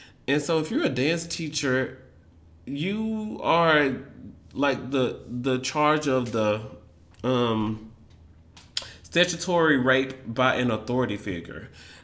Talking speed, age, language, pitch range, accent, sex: 110 wpm, 30-49, English, 110-150 Hz, American, male